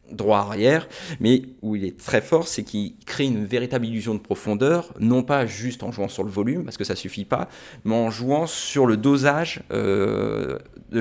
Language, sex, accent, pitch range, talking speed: French, male, French, 105-135 Hz, 205 wpm